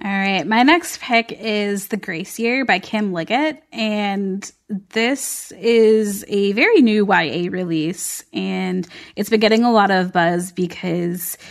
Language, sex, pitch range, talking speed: English, female, 185-220 Hz, 140 wpm